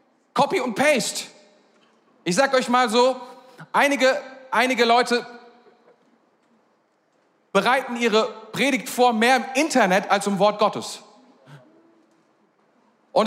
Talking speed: 105 wpm